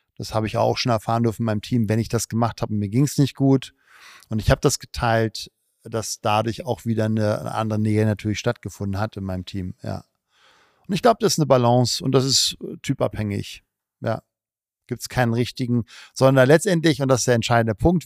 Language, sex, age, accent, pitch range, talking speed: German, male, 50-69, German, 110-140 Hz, 215 wpm